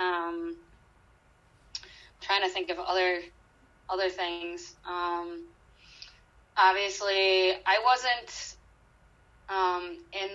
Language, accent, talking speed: English, American, 80 wpm